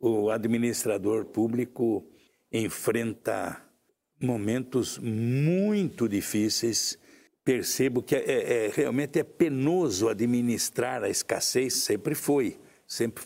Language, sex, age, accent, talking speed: Portuguese, male, 60-79, Brazilian, 90 wpm